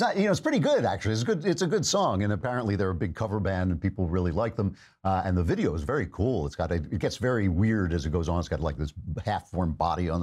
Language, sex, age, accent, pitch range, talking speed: English, male, 50-69, American, 95-125 Hz, 285 wpm